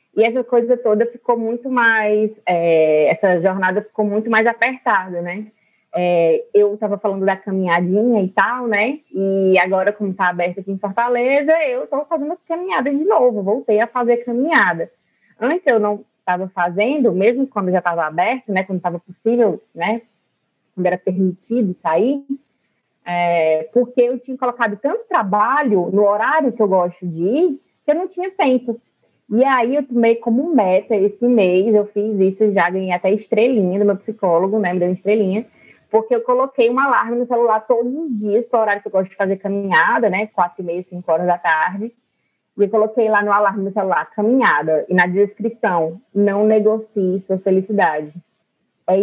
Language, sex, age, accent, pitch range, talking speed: Portuguese, female, 20-39, Brazilian, 190-245 Hz, 180 wpm